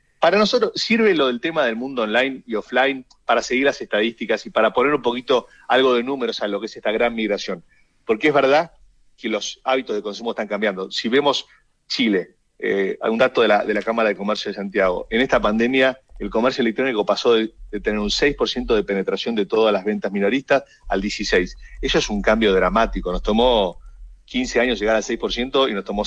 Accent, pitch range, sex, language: Argentinian, 105-130 Hz, male, Spanish